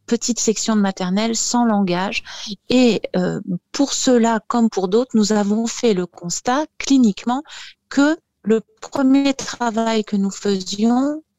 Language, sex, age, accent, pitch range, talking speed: French, female, 40-59, French, 205-240 Hz, 135 wpm